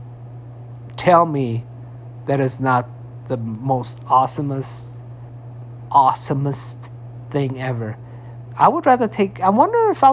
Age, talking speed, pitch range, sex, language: 50-69, 115 wpm, 120-155 Hz, male, English